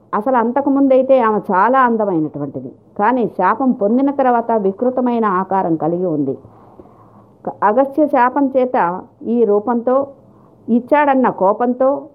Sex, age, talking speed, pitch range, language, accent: female, 50-69, 100 wpm, 185-250 Hz, Telugu, native